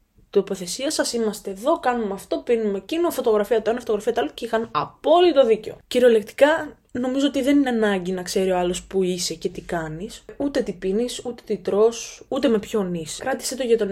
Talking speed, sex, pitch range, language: 205 wpm, female, 195-255 Hz, Greek